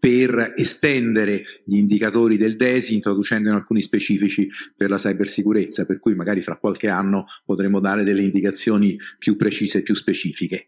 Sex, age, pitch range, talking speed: male, 40-59, 105-125 Hz, 150 wpm